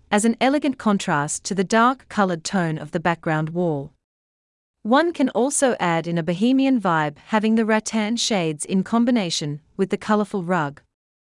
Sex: female